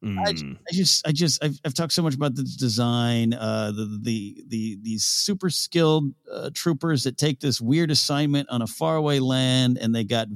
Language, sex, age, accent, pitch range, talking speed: English, male, 50-69, American, 110-140 Hz, 205 wpm